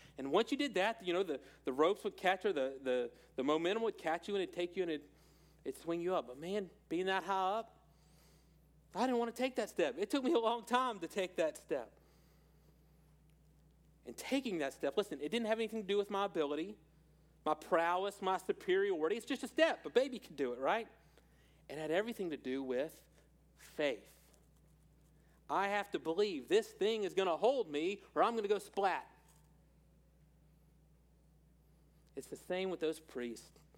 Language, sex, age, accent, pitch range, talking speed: English, male, 40-59, American, 150-200 Hz, 195 wpm